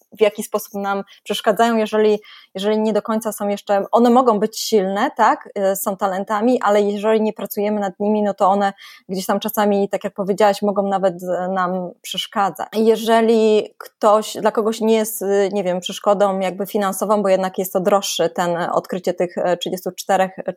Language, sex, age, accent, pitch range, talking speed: Polish, female, 20-39, native, 200-235 Hz, 170 wpm